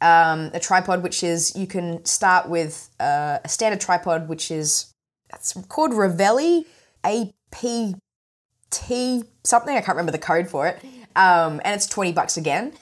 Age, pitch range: 20-39, 155-195 Hz